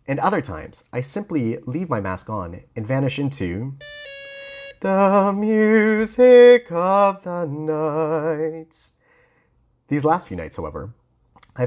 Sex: male